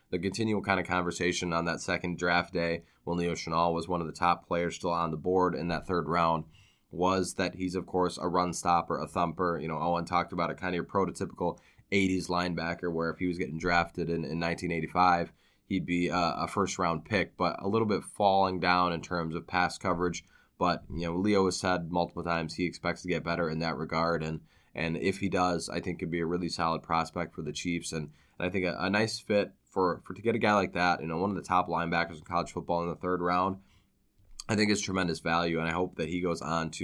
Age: 20-39